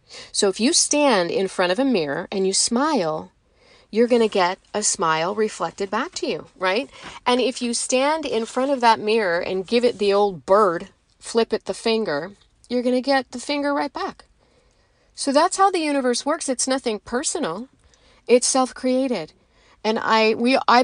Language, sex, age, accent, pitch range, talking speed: English, female, 40-59, American, 180-240 Hz, 185 wpm